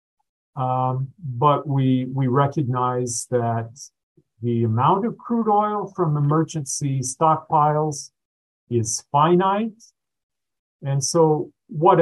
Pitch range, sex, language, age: 120-150 Hz, male, English, 50-69